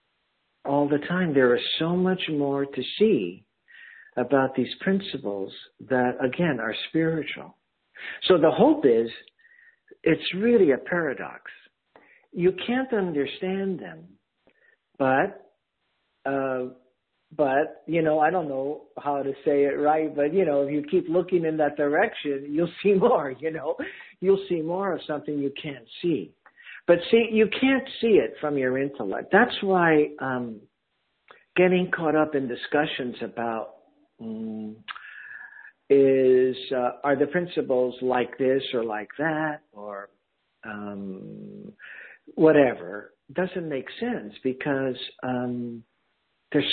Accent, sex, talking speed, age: American, male, 135 wpm, 60-79